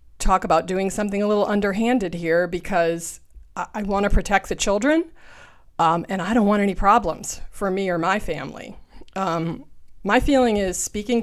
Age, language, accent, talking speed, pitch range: 40-59, English, American, 170 wpm, 160-200 Hz